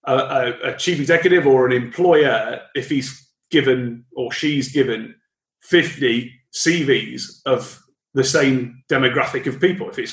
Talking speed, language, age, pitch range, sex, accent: 135 wpm, English, 30-49, 130-165 Hz, male, British